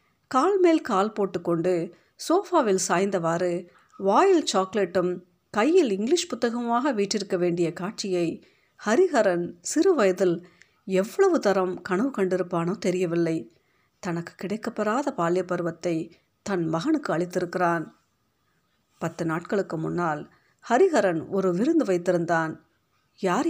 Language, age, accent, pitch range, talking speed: Tamil, 50-69, native, 175-220 Hz, 90 wpm